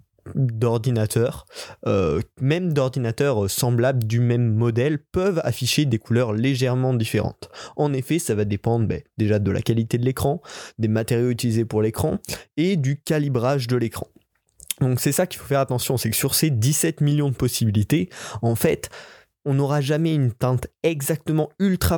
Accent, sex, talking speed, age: French, male, 160 wpm, 20-39